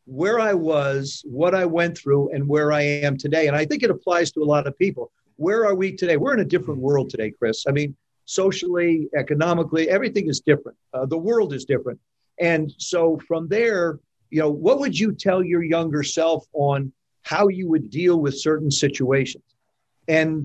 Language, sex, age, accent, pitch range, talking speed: English, male, 50-69, American, 140-170 Hz, 195 wpm